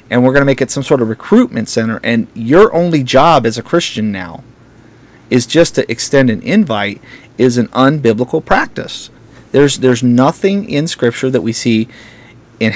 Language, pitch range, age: English, 115-140 Hz, 30-49